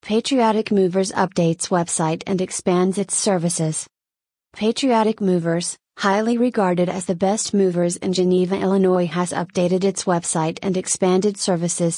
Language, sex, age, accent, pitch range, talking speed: English, female, 30-49, American, 180-200 Hz, 130 wpm